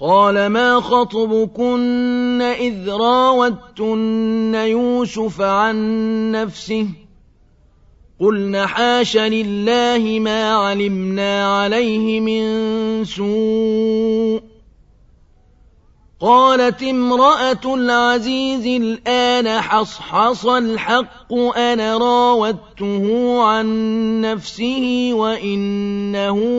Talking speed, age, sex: 60 wpm, 40-59, male